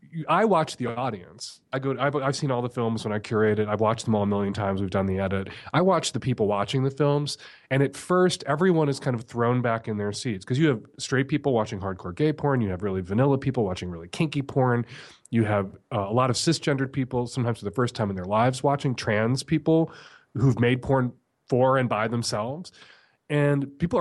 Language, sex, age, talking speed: English, male, 30-49, 230 wpm